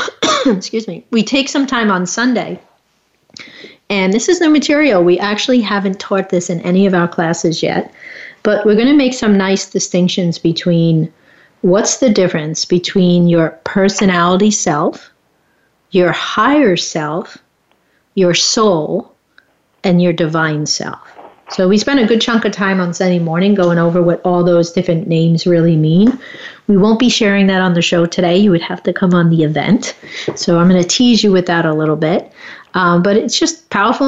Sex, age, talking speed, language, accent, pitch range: female, 50-69, 180 wpm, English, American, 175-210 Hz